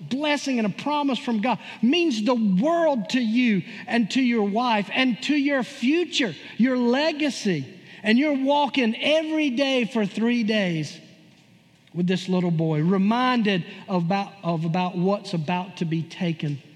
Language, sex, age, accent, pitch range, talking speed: English, male, 50-69, American, 195-265 Hz, 155 wpm